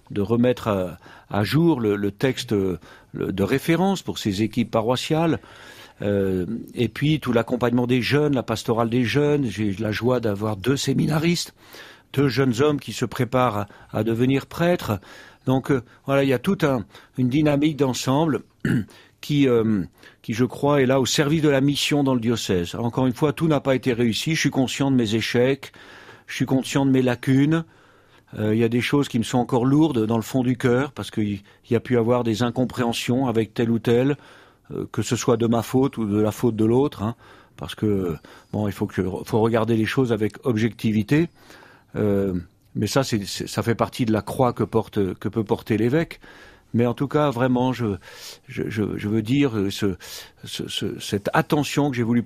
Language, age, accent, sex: French, 50-69, French, male